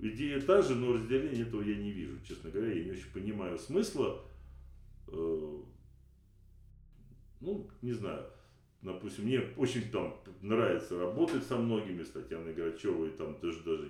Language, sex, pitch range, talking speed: Russian, male, 90-135 Hz, 140 wpm